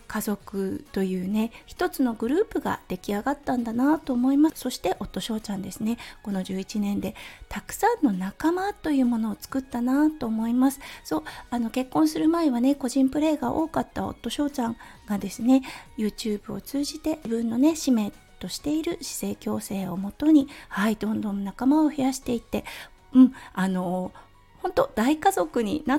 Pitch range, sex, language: 215-295 Hz, female, Japanese